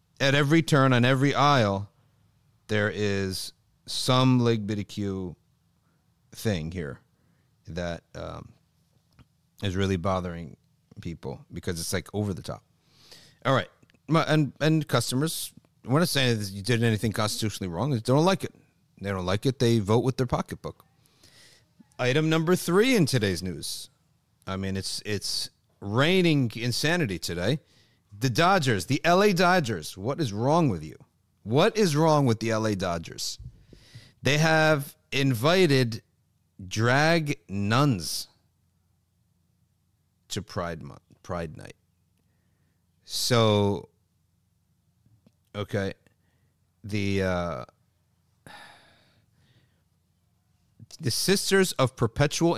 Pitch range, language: 95-140 Hz, English